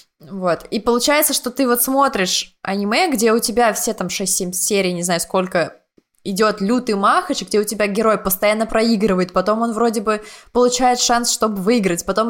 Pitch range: 195-245 Hz